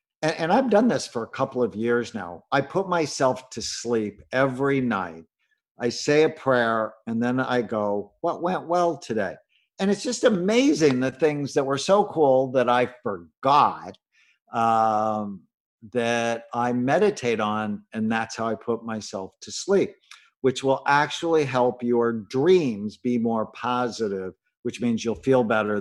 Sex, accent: male, American